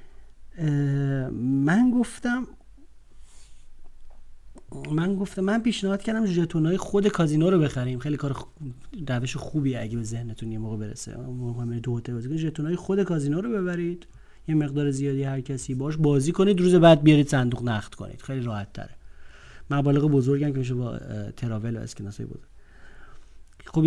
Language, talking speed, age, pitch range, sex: Persian, 140 wpm, 40-59, 120-185 Hz, male